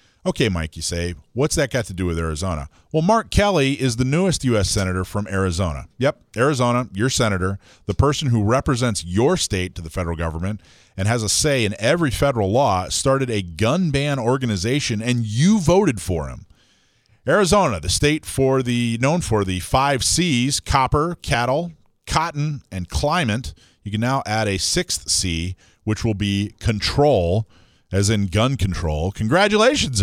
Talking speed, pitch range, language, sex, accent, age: 170 wpm, 95-130 Hz, English, male, American, 40-59